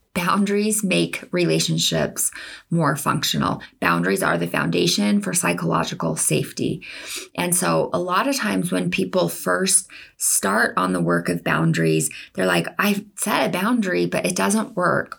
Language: English